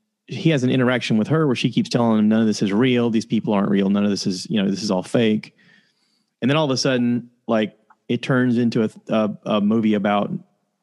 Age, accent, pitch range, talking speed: 30-49, American, 105-130 Hz, 250 wpm